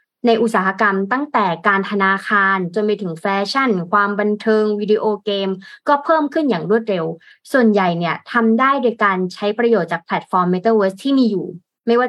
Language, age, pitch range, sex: Thai, 20-39, 185-235 Hz, female